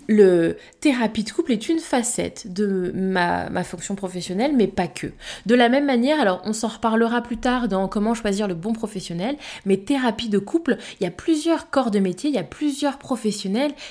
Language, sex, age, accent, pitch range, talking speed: French, female, 20-39, French, 190-255 Hz, 205 wpm